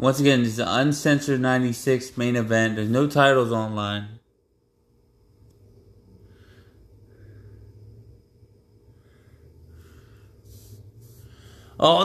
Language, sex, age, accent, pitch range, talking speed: English, male, 20-39, American, 105-160 Hz, 70 wpm